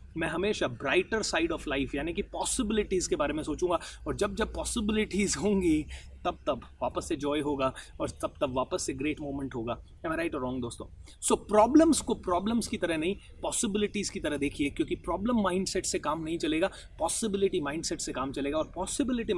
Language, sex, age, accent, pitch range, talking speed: Hindi, male, 30-49, native, 150-230 Hz, 195 wpm